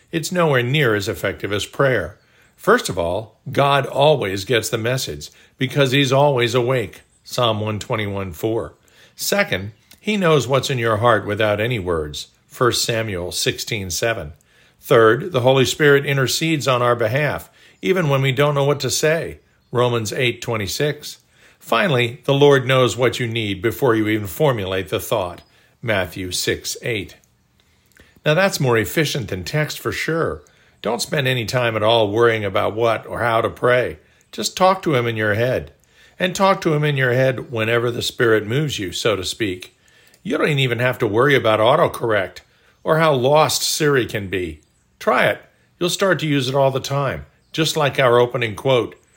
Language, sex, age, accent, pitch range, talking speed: English, male, 50-69, American, 110-140 Hz, 170 wpm